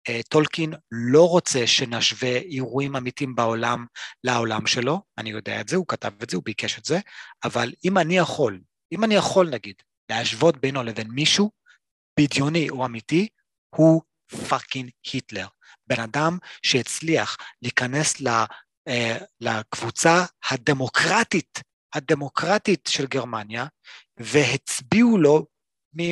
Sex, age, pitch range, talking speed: male, 30-49, 125-175 Hz, 120 wpm